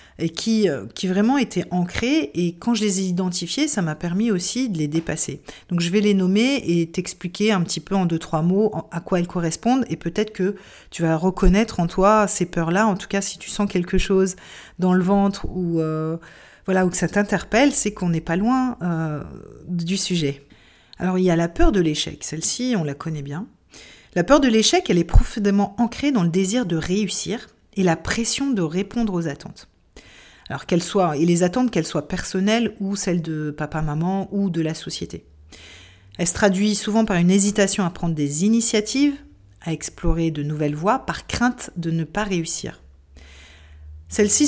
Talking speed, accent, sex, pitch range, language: 195 wpm, French, female, 165-210 Hz, French